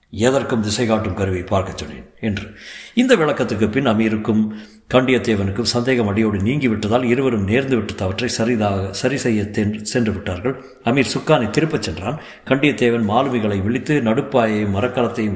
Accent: native